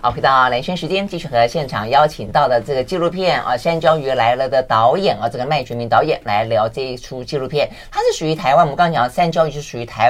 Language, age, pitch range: Chinese, 30-49, 130-190 Hz